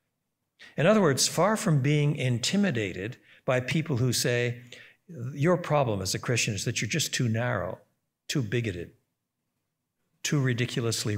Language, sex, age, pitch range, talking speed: English, male, 60-79, 110-135 Hz, 140 wpm